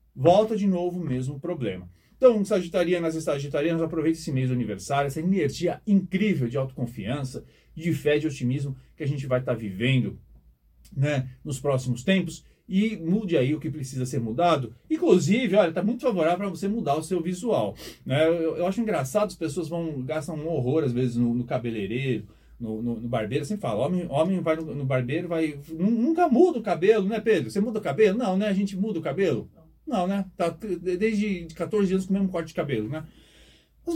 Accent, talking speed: Brazilian, 205 wpm